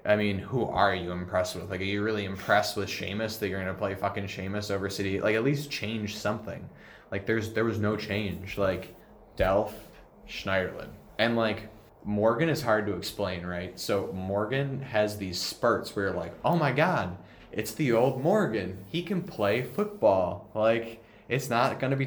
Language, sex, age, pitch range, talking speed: English, male, 20-39, 95-110 Hz, 190 wpm